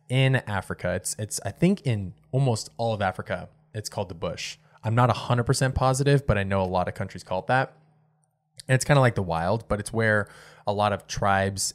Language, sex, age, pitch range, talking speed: English, male, 20-39, 95-130 Hz, 230 wpm